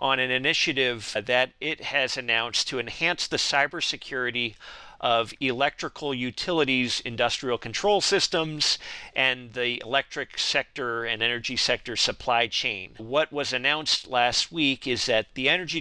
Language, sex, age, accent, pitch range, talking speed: English, male, 40-59, American, 120-145 Hz, 135 wpm